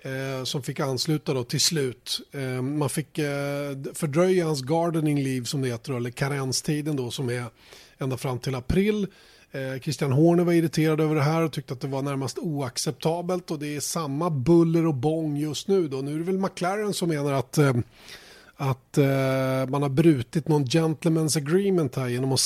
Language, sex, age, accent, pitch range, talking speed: Swedish, male, 30-49, native, 135-160 Hz, 175 wpm